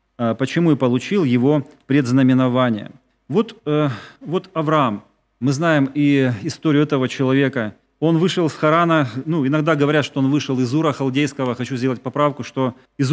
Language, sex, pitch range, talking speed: Russian, male, 130-170 Hz, 150 wpm